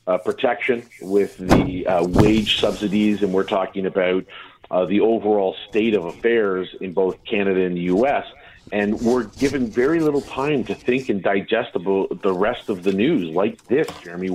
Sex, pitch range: male, 95-120 Hz